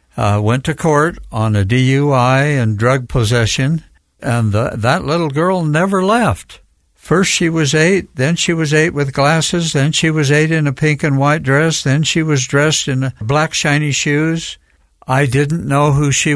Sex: male